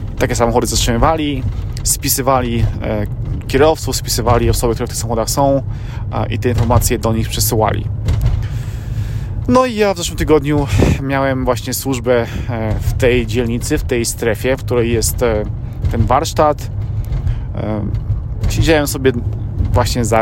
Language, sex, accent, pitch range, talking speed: Polish, male, native, 110-125 Hz, 125 wpm